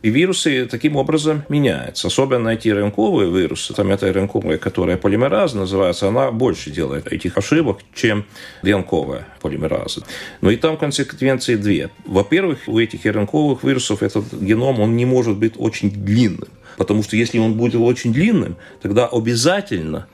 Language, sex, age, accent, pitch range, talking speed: Russian, male, 40-59, native, 100-130 Hz, 150 wpm